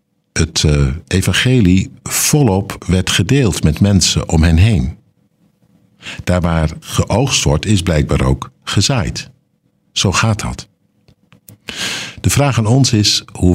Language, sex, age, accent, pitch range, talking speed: Dutch, male, 60-79, Dutch, 85-110 Hz, 120 wpm